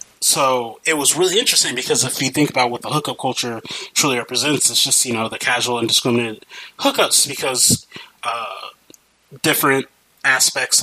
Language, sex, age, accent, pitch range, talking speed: English, male, 20-39, American, 120-140 Hz, 155 wpm